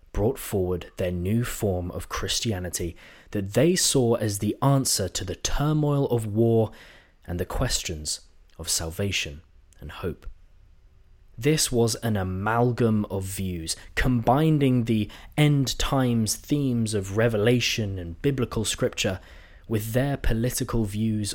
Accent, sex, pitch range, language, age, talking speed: British, male, 90-125 Hz, English, 20-39, 125 wpm